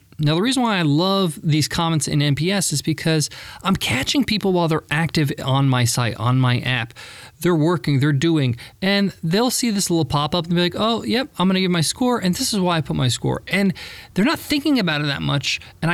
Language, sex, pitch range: English, male, 125-180 Hz